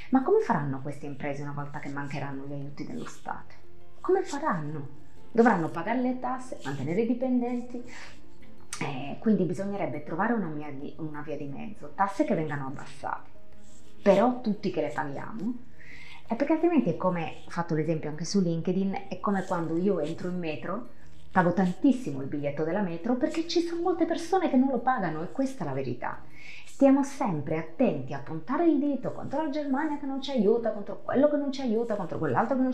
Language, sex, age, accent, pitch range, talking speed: Italian, female, 30-49, native, 150-245 Hz, 185 wpm